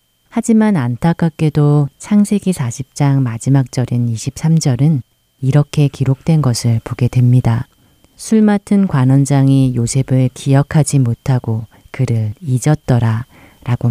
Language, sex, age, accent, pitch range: Korean, female, 30-49, native, 120-150 Hz